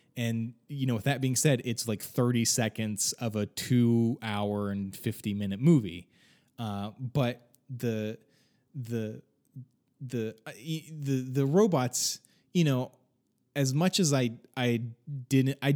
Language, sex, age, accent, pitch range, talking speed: English, male, 20-39, American, 120-155 Hz, 135 wpm